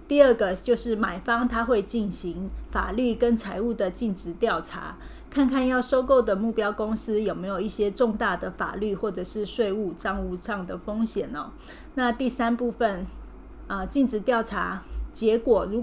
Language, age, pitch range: Chinese, 20-39, 195-235 Hz